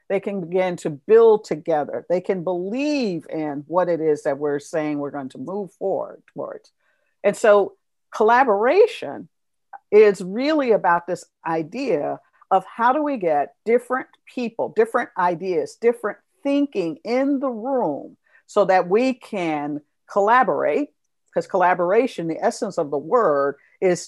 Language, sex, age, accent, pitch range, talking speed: English, female, 50-69, American, 165-260 Hz, 140 wpm